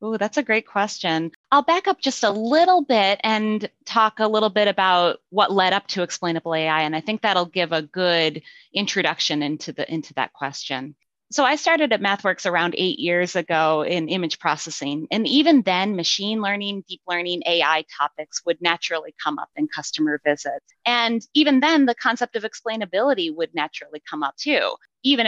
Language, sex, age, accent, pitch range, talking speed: English, female, 30-49, American, 165-235 Hz, 185 wpm